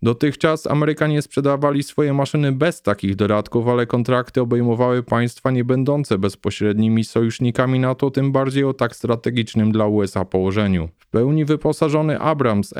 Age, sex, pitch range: 20-39, male, 115-140 Hz